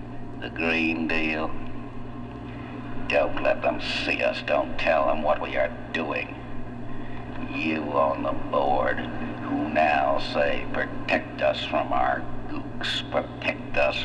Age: 60-79